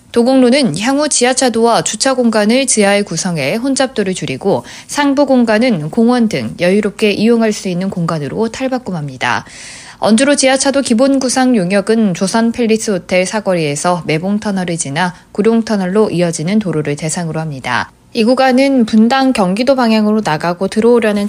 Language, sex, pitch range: Korean, female, 175-245 Hz